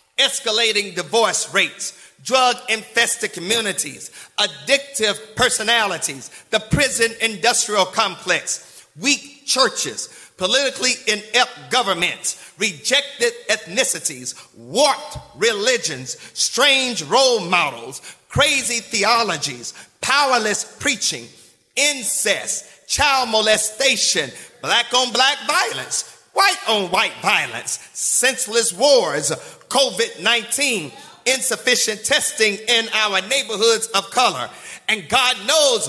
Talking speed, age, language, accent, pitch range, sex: 80 wpm, 40-59, English, American, 220-275 Hz, male